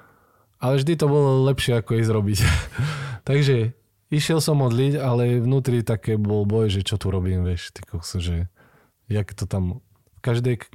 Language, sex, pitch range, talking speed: Slovak, male, 100-120 Hz, 145 wpm